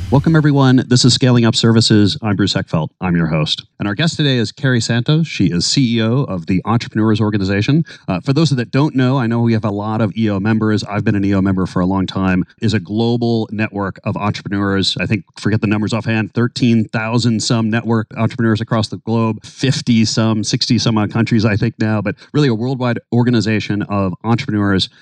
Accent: American